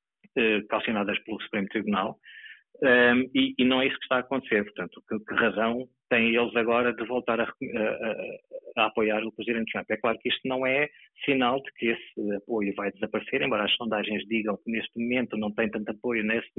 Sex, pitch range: male, 105-120 Hz